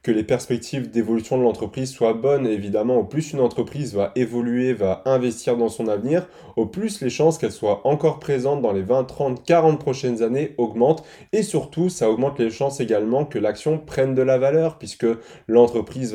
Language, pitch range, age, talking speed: French, 115-135 Hz, 20-39, 195 wpm